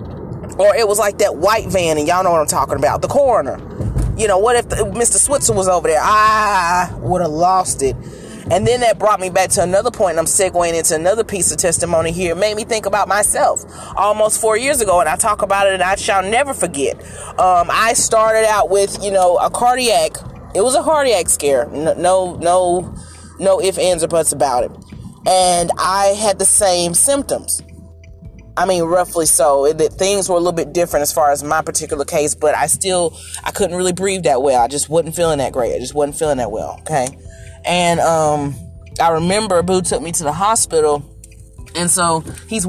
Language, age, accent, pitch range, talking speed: English, 30-49, American, 145-200 Hz, 215 wpm